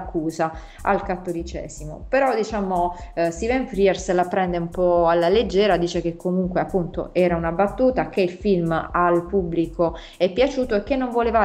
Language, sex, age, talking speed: Italian, female, 30-49, 170 wpm